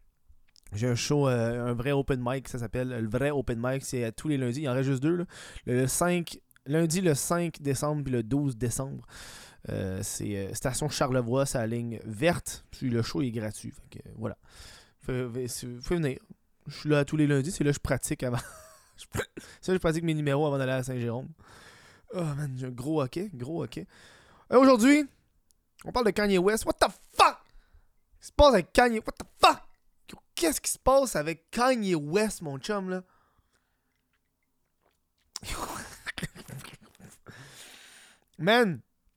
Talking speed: 170 wpm